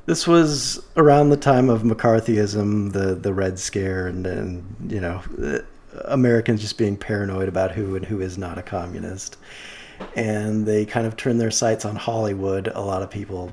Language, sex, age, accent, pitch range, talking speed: English, male, 40-59, American, 95-120 Hz, 175 wpm